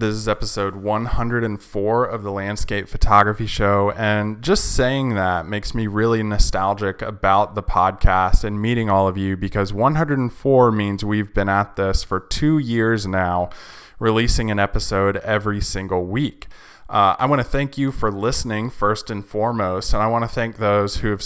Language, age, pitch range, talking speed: English, 20-39, 100-120 Hz, 170 wpm